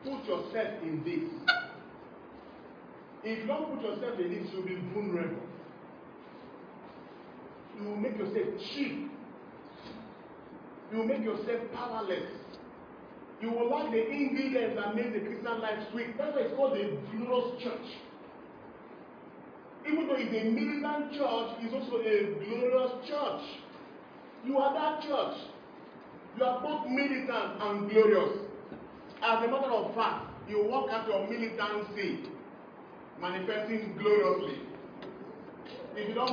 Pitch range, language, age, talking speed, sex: 210-265 Hz, English, 40-59, 130 wpm, male